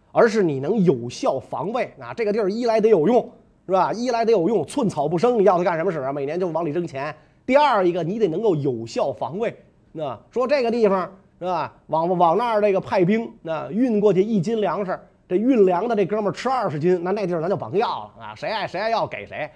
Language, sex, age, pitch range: Chinese, male, 30-49, 160-225 Hz